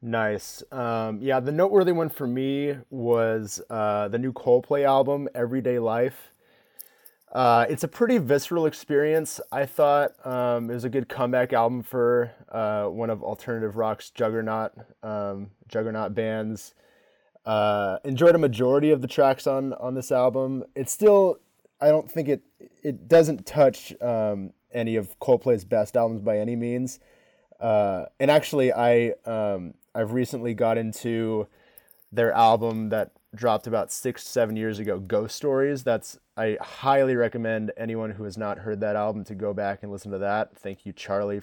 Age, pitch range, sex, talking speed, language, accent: 20-39, 105-130 Hz, male, 160 wpm, English, American